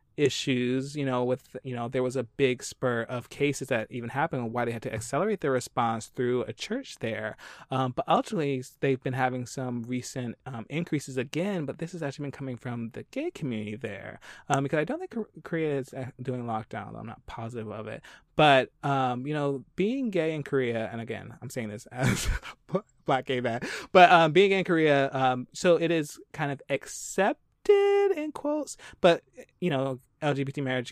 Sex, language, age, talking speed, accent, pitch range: male, English, 20-39, 190 wpm, American, 120-145 Hz